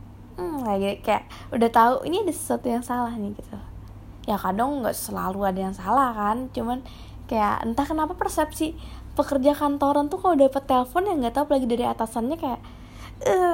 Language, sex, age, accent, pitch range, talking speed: Indonesian, female, 20-39, native, 200-280 Hz, 175 wpm